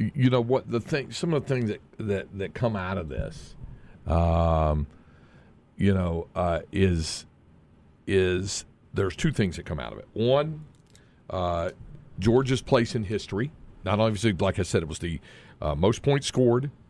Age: 50-69